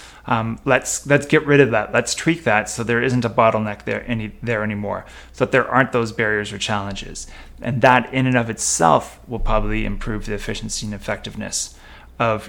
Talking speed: 195 wpm